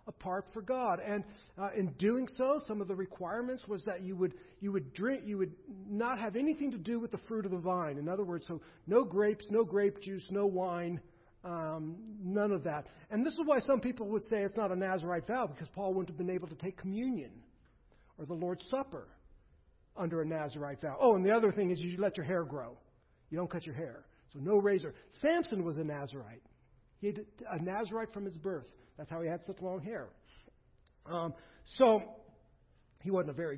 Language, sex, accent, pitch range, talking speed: English, male, American, 160-210 Hz, 215 wpm